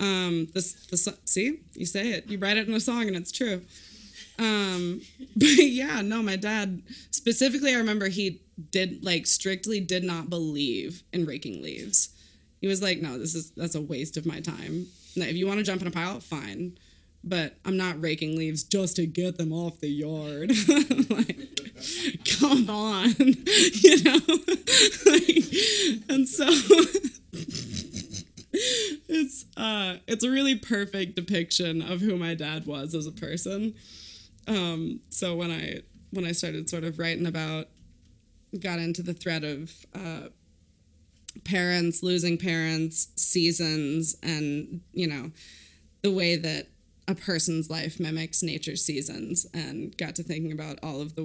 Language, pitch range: English, 155-210 Hz